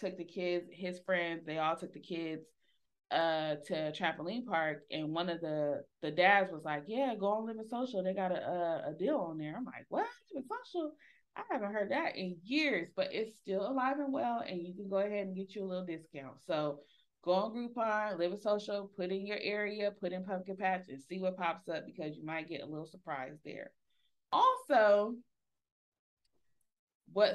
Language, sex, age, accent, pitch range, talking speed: English, female, 20-39, American, 165-215 Hz, 200 wpm